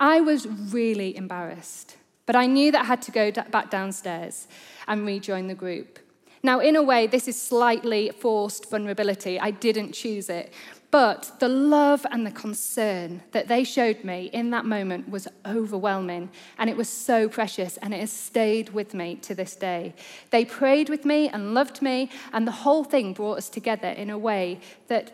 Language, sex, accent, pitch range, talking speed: English, female, British, 195-250 Hz, 185 wpm